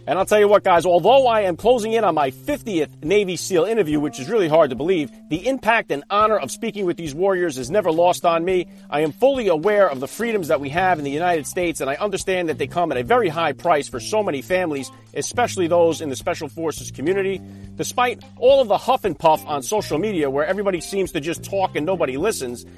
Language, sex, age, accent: English, male, 40-59, American